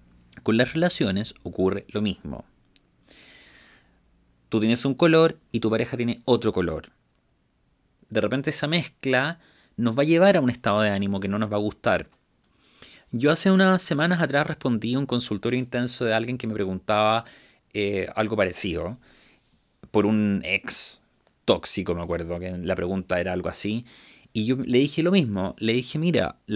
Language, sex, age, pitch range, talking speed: Spanish, male, 30-49, 105-160 Hz, 165 wpm